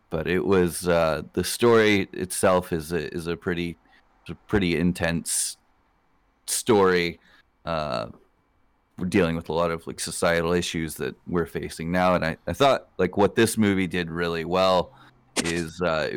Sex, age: male, 30-49